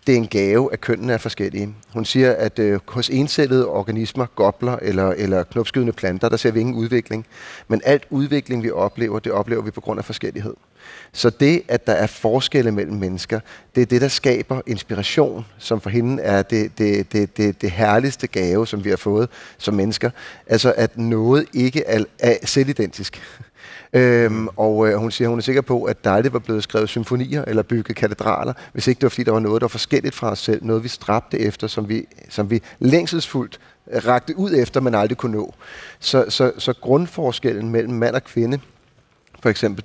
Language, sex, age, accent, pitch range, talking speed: Danish, male, 30-49, native, 110-130 Hz, 200 wpm